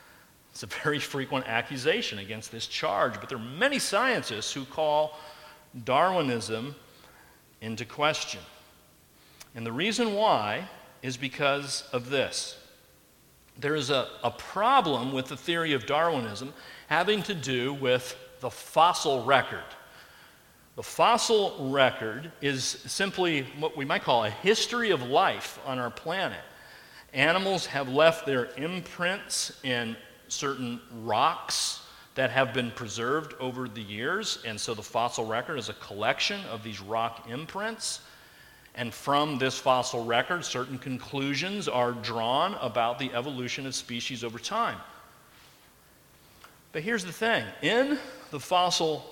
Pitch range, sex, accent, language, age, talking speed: 125-175 Hz, male, American, English, 50-69, 135 wpm